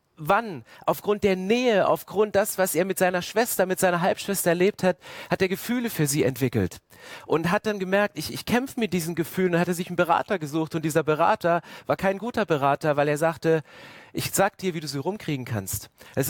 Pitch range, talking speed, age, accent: 155-200 Hz, 215 wpm, 40-59, German